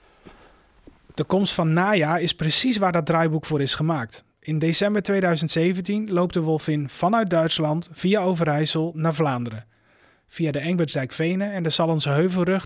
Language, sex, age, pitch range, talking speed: Dutch, male, 30-49, 150-180 Hz, 145 wpm